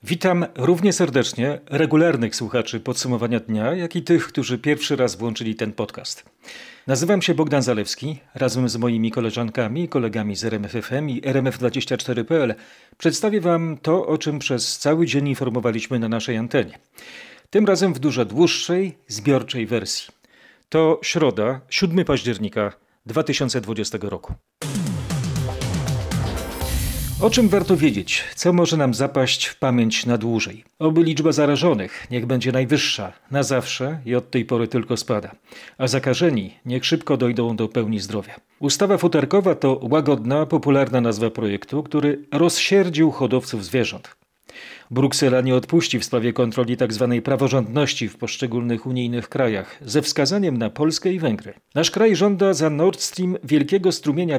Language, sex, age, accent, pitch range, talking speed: Polish, male, 40-59, native, 120-160 Hz, 140 wpm